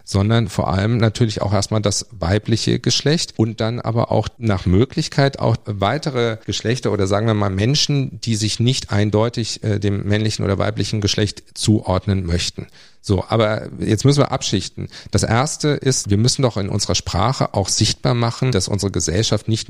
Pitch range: 100-130 Hz